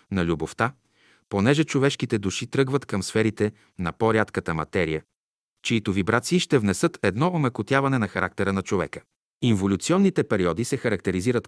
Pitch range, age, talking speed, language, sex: 95-125 Hz, 40-59, 130 wpm, Bulgarian, male